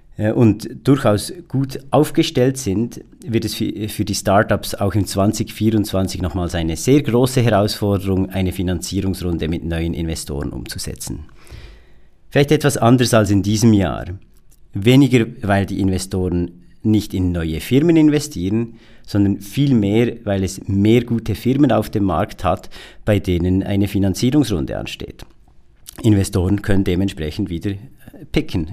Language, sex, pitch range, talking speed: German, male, 95-115 Hz, 130 wpm